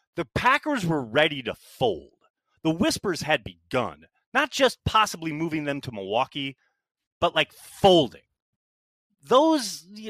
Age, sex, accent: 30-49, male, American